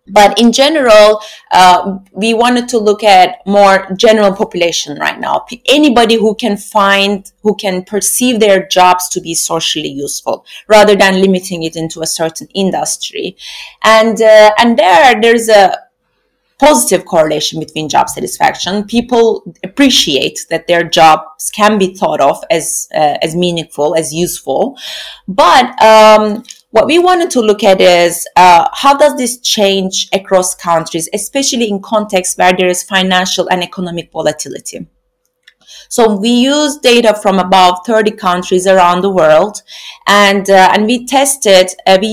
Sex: female